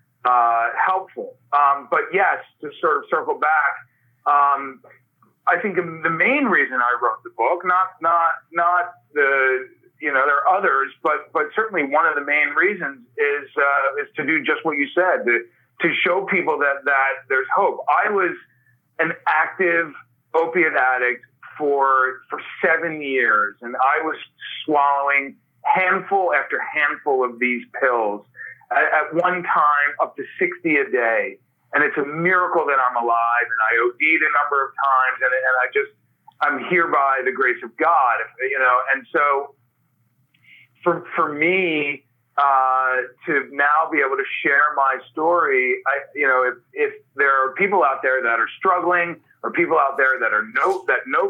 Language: English